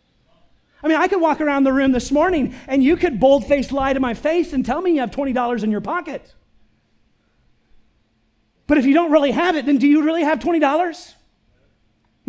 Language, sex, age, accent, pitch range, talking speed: English, male, 30-49, American, 240-295 Hz, 195 wpm